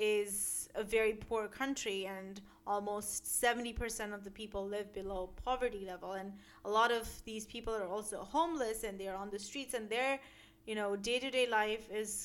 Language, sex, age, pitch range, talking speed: English, female, 30-49, 200-260 Hz, 185 wpm